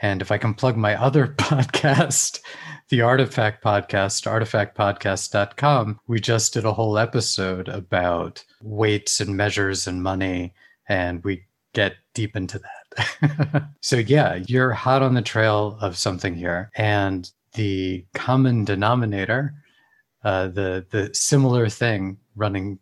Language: English